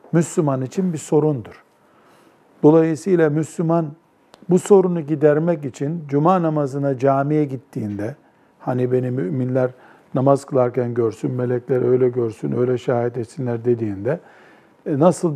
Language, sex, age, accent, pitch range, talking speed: Turkish, male, 50-69, native, 140-175 Hz, 110 wpm